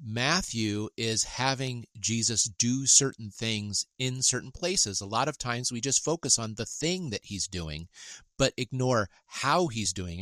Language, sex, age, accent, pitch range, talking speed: English, male, 40-59, American, 105-135 Hz, 165 wpm